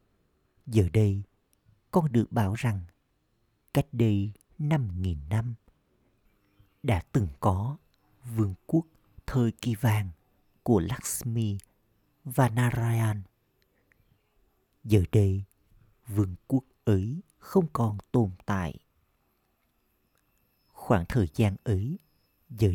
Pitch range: 95-120 Hz